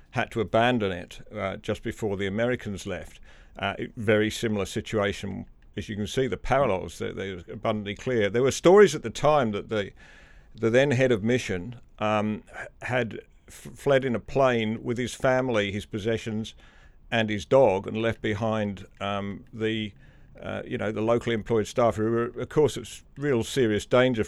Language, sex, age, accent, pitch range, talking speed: English, male, 50-69, British, 100-120 Hz, 180 wpm